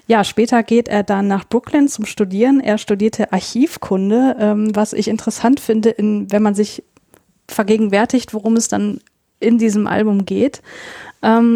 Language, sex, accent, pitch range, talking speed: German, female, German, 195-225 Hz, 150 wpm